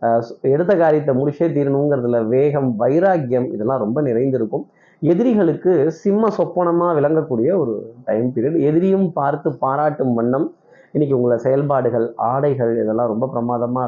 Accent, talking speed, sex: native, 115 wpm, male